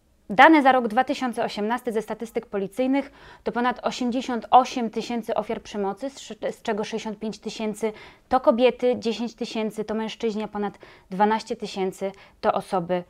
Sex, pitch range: female, 205-240 Hz